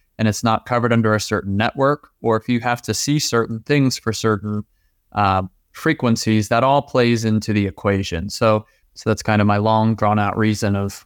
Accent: American